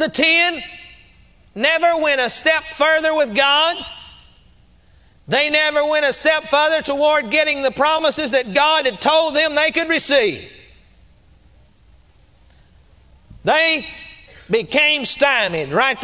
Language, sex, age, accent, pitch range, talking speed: English, male, 50-69, American, 210-315 Hz, 115 wpm